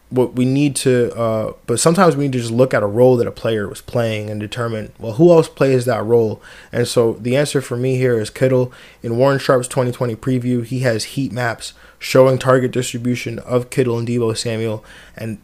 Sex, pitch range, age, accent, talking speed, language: male, 115-130 Hz, 20-39, American, 220 wpm, English